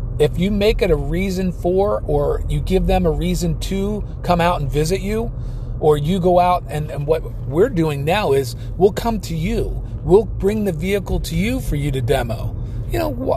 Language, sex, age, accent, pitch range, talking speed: English, male, 40-59, American, 125-175 Hz, 205 wpm